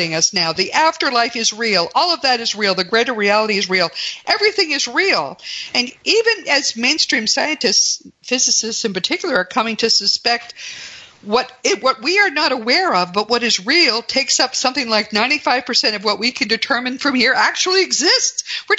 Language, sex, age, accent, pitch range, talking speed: English, female, 50-69, American, 190-275 Hz, 185 wpm